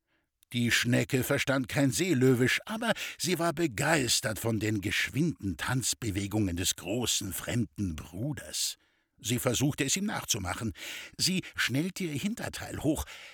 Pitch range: 110-160 Hz